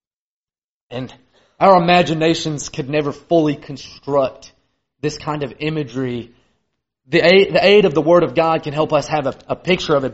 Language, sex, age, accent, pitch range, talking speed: English, male, 30-49, American, 140-190 Hz, 170 wpm